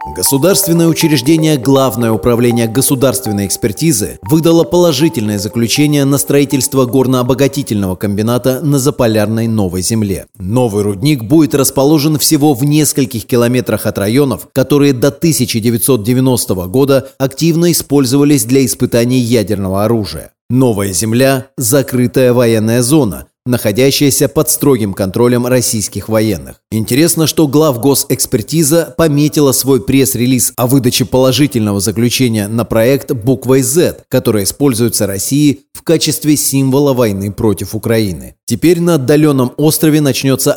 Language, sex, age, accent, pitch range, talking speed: Russian, male, 30-49, native, 110-145 Hz, 120 wpm